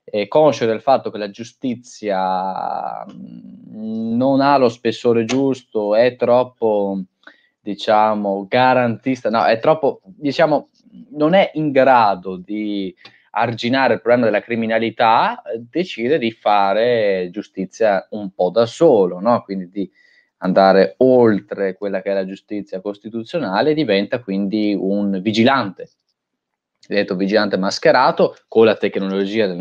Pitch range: 100-145 Hz